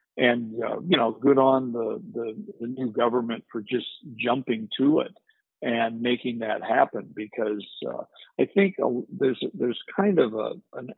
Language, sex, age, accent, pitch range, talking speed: English, male, 50-69, American, 110-125 Hz, 165 wpm